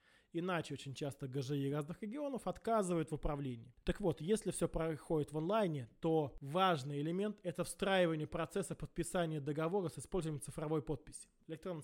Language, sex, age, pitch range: Russian, male, 20-39, 155-190 Hz